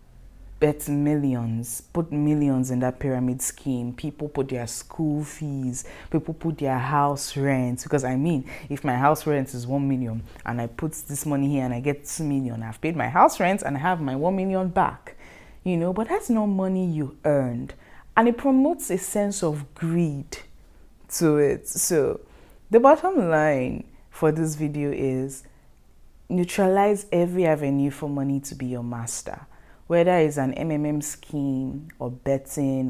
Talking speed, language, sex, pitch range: 170 wpm, English, female, 130-165 Hz